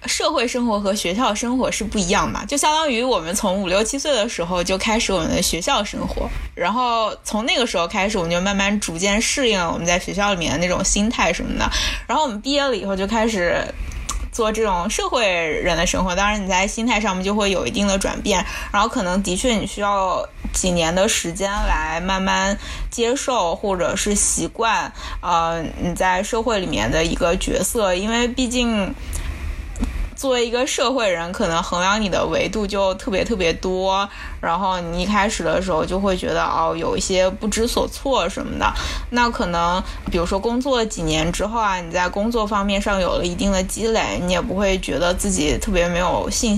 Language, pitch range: Chinese, 180-225 Hz